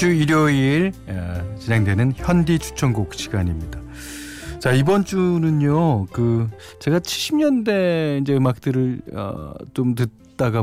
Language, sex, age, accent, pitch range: Korean, male, 40-59, native, 100-155 Hz